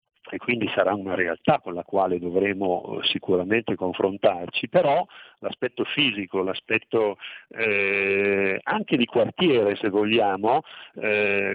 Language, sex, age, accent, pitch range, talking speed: Italian, male, 50-69, native, 100-125 Hz, 115 wpm